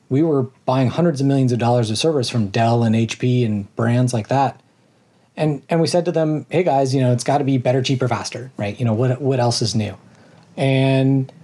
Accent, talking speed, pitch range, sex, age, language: American, 230 wpm, 125-155 Hz, male, 30-49, English